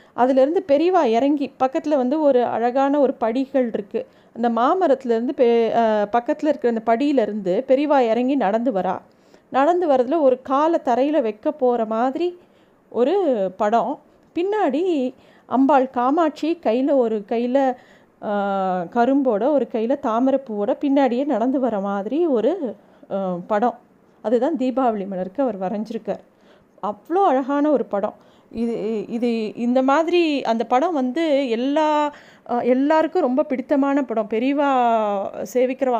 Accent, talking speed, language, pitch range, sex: native, 120 wpm, Tamil, 230-290 Hz, female